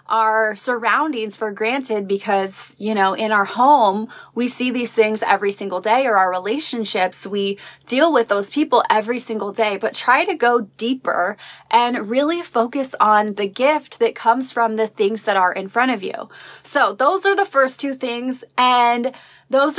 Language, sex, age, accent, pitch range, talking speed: English, female, 20-39, American, 220-275 Hz, 180 wpm